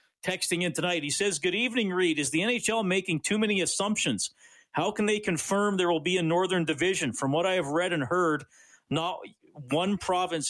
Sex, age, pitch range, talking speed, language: male, 40-59, 125-170 Hz, 200 wpm, English